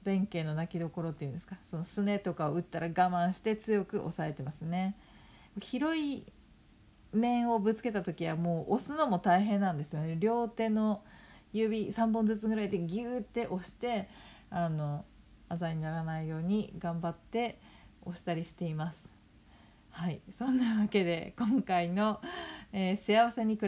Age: 40-59